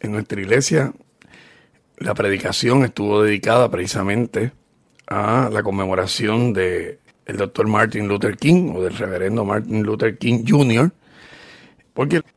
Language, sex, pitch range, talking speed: Spanish, male, 110-135 Hz, 120 wpm